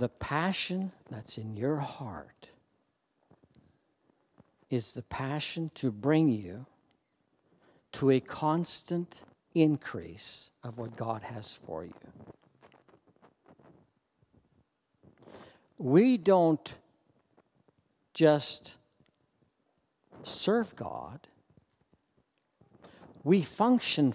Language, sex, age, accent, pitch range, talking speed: English, male, 60-79, American, 130-180 Hz, 70 wpm